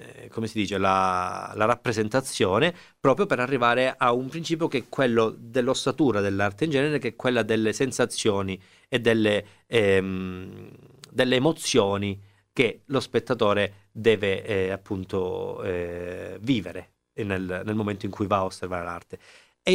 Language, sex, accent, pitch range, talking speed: Italian, male, native, 95-120 Hz, 145 wpm